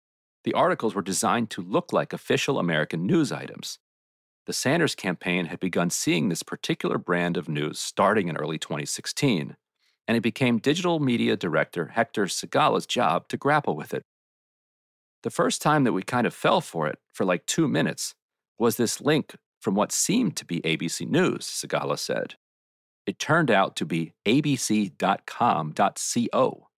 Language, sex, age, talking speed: English, male, 40-59, 160 wpm